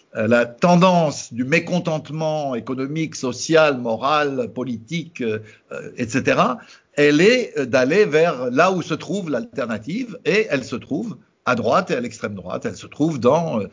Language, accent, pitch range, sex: French, French, 125-190 Hz, male